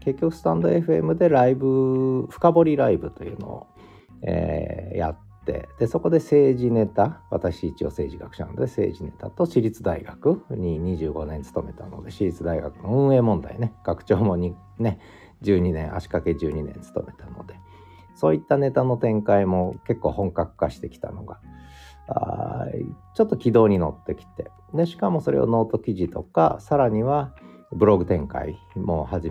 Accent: native